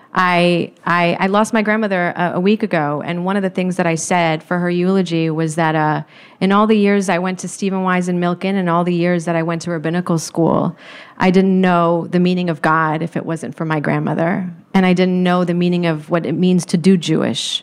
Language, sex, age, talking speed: English, female, 30-49, 240 wpm